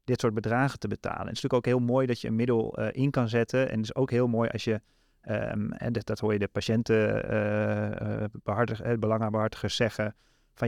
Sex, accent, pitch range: male, Dutch, 110-130 Hz